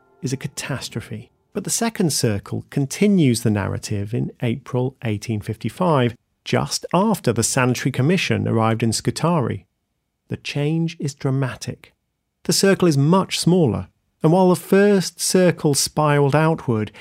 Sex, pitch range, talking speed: male, 115-160 Hz, 130 wpm